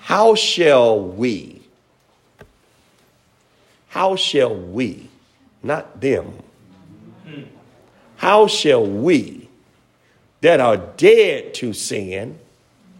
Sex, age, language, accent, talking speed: male, 50-69, English, American, 75 wpm